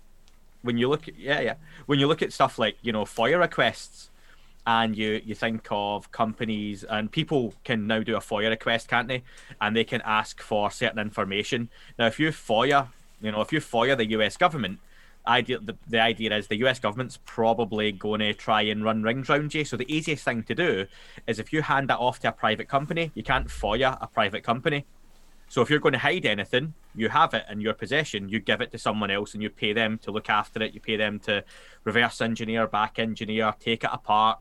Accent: British